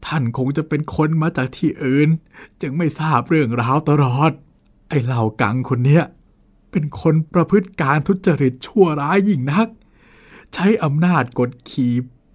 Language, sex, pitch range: Thai, male, 125-185 Hz